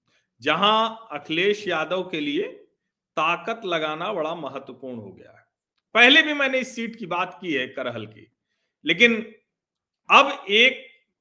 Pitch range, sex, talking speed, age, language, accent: 150-215 Hz, male, 140 wpm, 40-59, Hindi, native